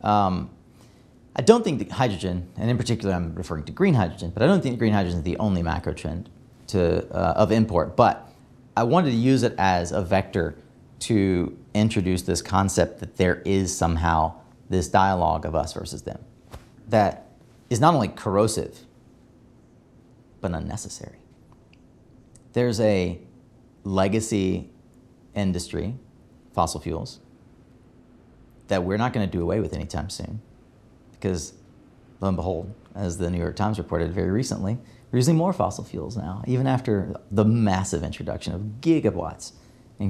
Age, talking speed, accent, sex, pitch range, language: 30-49, 150 wpm, American, male, 90-110 Hz, English